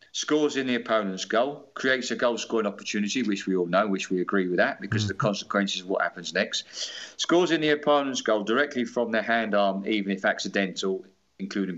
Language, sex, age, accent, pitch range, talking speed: English, male, 40-59, British, 100-150 Hz, 205 wpm